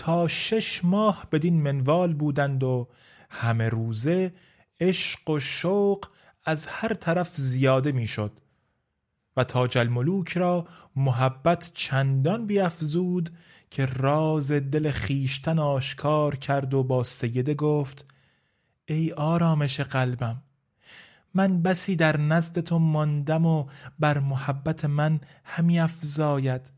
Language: Persian